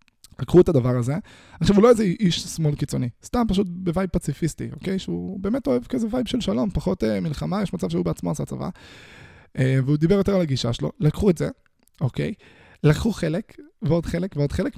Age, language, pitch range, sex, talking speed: 20-39, Hebrew, 130-180 Hz, male, 200 wpm